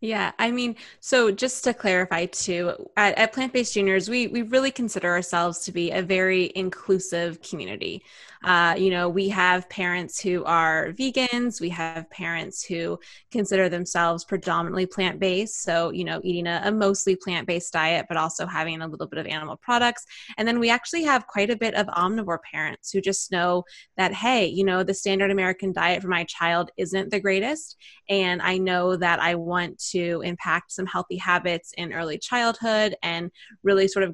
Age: 20-39